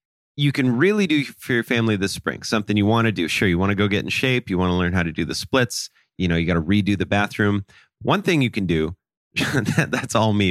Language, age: English, 30-49